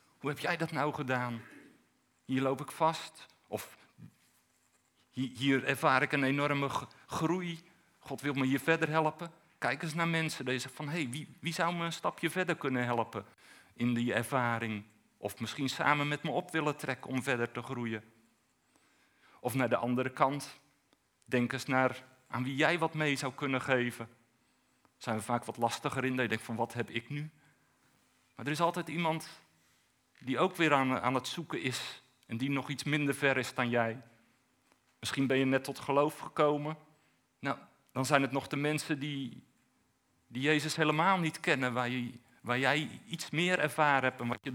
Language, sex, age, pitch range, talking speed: Dutch, male, 50-69, 120-150 Hz, 185 wpm